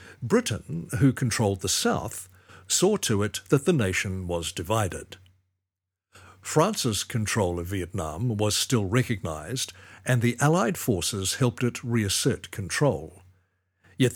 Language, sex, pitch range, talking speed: English, male, 95-125 Hz, 125 wpm